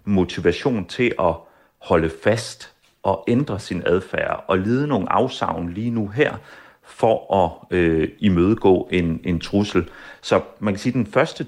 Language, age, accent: Danish, 40-59, native